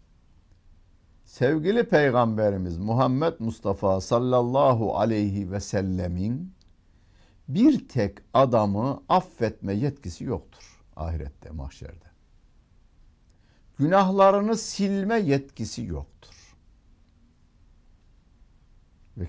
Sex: male